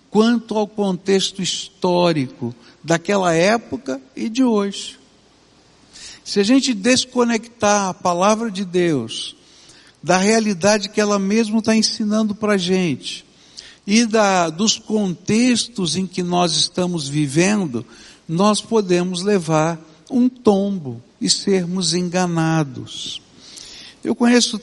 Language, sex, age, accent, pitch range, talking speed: Portuguese, male, 60-79, Brazilian, 165-225 Hz, 110 wpm